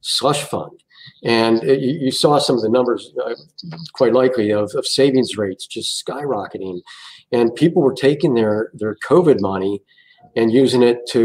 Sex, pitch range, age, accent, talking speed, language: male, 115-150 Hz, 50-69, American, 160 wpm, English